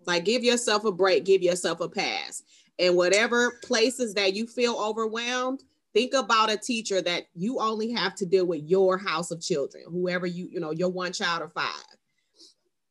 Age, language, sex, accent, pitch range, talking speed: 30-49, English, female, American, 170-215 Hz, 185 wpm